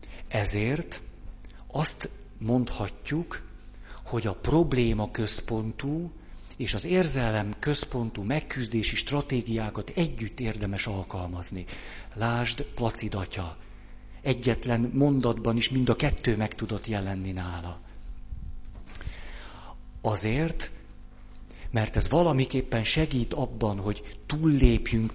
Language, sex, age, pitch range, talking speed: Hungarian, male, 50-69, 95-120 Hz, 85 wpm